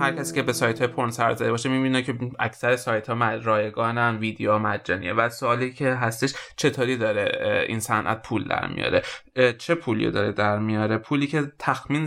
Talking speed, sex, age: 165 wpm, male, 20-39